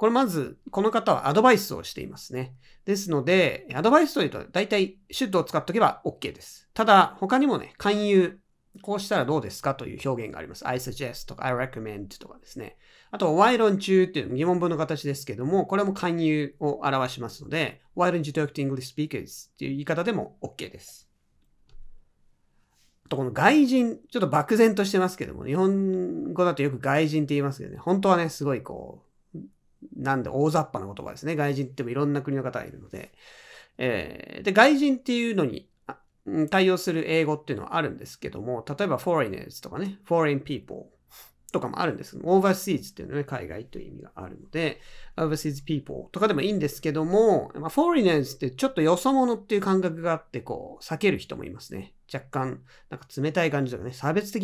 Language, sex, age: Japanese, male, 40-59